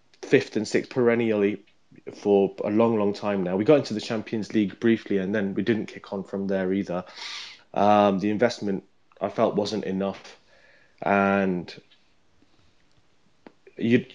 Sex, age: male, 20-39